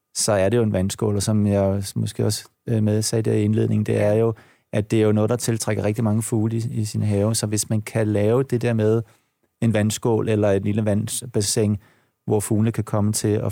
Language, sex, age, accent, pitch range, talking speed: Danish, male, 30-49, native, 105-120 Hz, 230 wpm